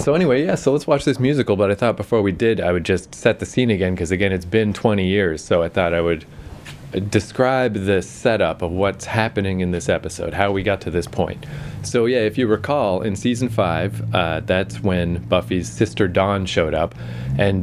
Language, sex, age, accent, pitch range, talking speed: English, male, 30-49, American, 90-105 Hz, 220 wpm